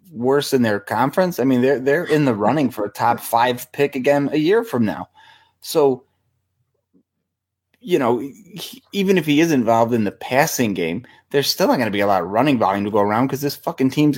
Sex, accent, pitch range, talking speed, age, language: male, American, 115-140 Hz, 215 wpm, 20-39, English